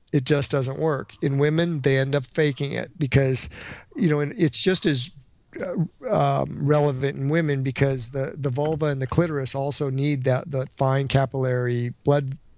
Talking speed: 170 wpm